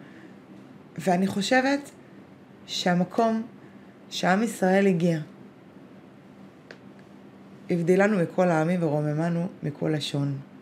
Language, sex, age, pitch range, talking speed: Hebrew, female, 20-39, 155-200 Hz, 70 wpm